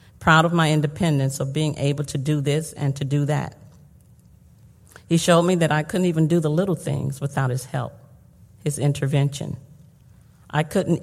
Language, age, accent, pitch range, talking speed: English, 50-69, American, 135-160 Hz, 175 wpm